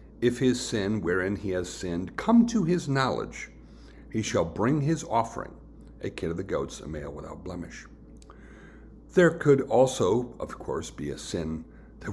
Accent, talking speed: American, 170 wpm